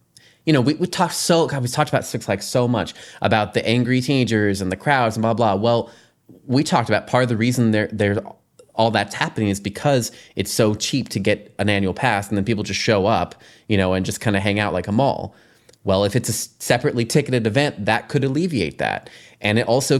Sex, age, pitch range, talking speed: male, 20-39, 100-120 Hz, 230 wpm